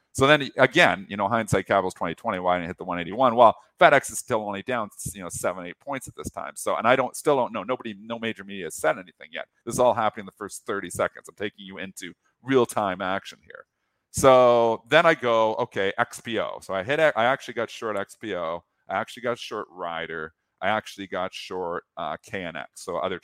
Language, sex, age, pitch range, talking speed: English, male, 40-59, 95-120 Hz, 225 wpm